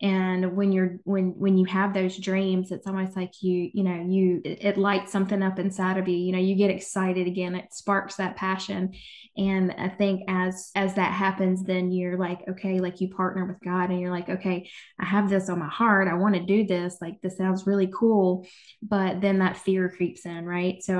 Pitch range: 180-195 Hz